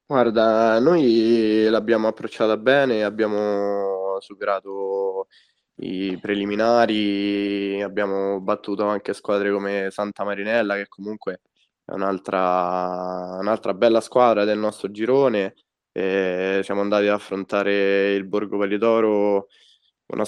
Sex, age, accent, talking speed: male, 20-39, native, 105 wpm